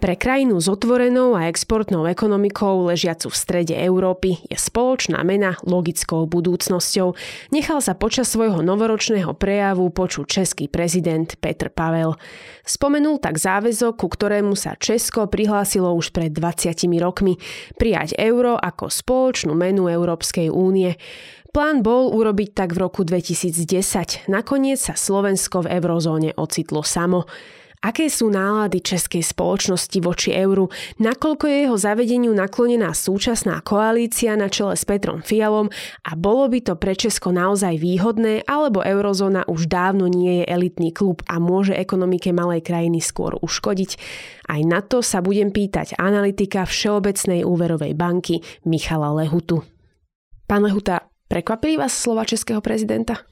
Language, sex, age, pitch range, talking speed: Slovak, female, 20-39, 175-220 Hz, 135 wpm